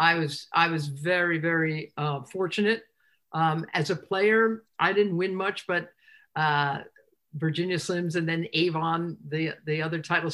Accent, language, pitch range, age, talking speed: American, English, 155-190 Hz, 50-69, 155 wpm